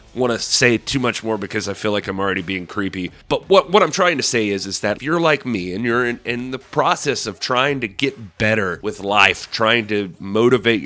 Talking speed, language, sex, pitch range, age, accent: 245 wpm, English, male, 100-130 Hz, 30-49, American